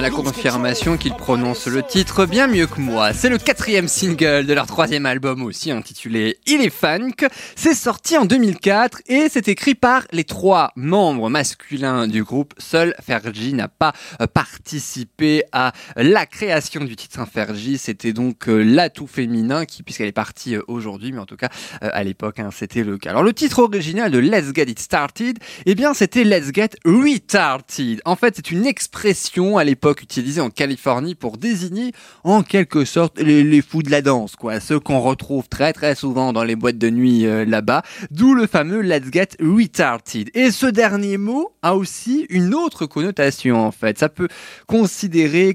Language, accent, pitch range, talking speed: French, French, 125-195 Hz, 185 wpm